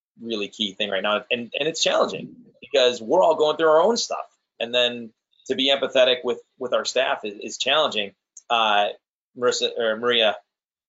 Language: English